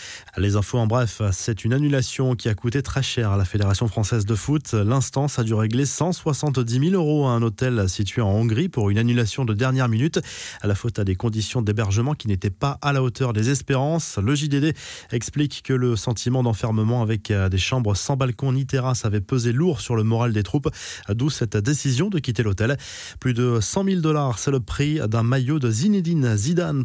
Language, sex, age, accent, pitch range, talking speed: French, male, 20-39, French, 110-140 Hz, 210 wpm